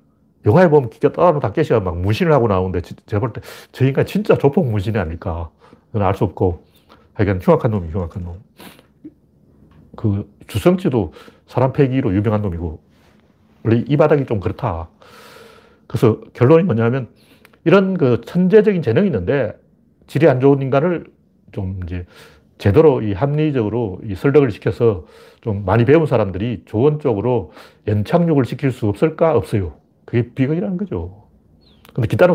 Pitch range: 105-155 Hz